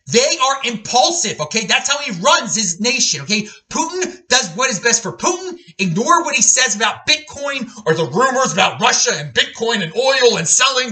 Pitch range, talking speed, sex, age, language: 200-285 Hz, 190 wpm, male, 30-49, English